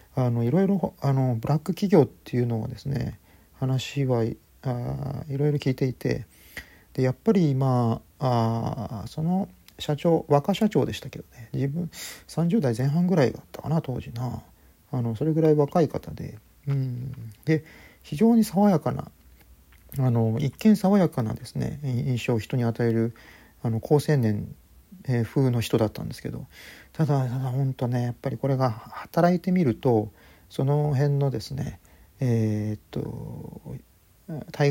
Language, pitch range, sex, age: Japanese, 115-150 Hz, male, 40-59